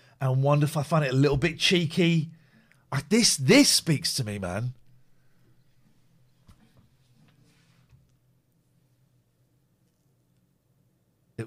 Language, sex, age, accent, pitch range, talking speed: English, male, 40-59, British, 125-170 Hz, 90 wpm